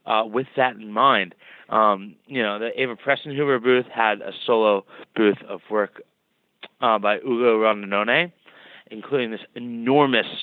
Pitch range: 100-125 Hz